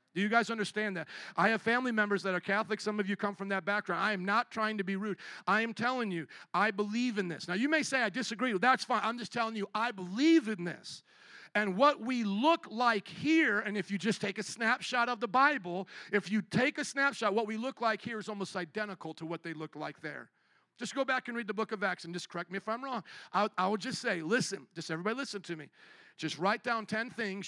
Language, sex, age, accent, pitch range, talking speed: English, male, 50-69, American, 180-220 Hz, 255 wpm